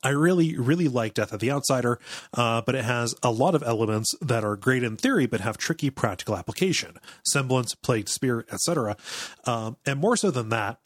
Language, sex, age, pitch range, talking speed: English, male, 30-49, 110-135 Hz, 195 wpm